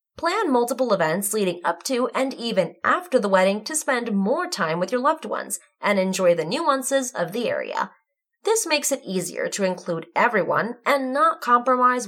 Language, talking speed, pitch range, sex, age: English, 180 wpm, 200-290 Hz, female, 20-39